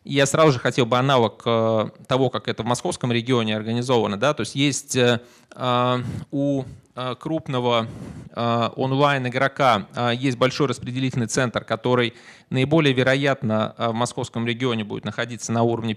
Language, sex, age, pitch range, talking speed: Russian, male, 20-39, 115-135 Hz, 125 wpm